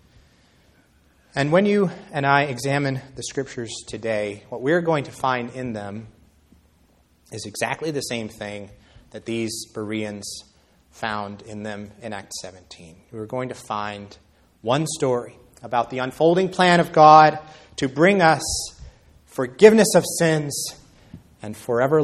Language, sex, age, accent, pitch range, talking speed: English, male, 30-49, American, 105-140 Hz, 135 wpm